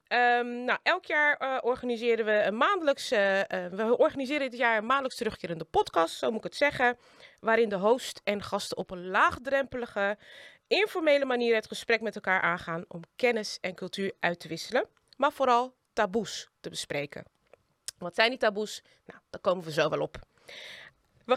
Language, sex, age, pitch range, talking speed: English, female, 20-39, 200-270 Hz, 150 wpm